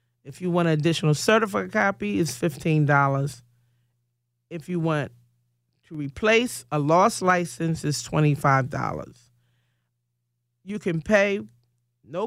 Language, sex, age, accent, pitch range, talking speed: English, male, 40-59, American, 120-175 Hz, 110 wpm